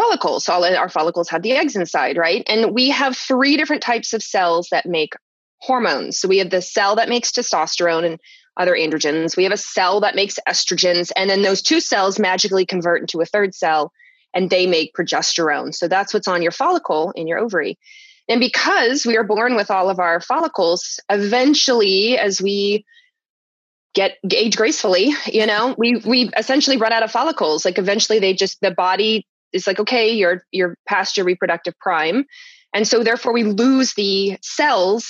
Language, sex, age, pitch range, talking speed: English, female, 20-39, 185-245 Hz, 190 wpm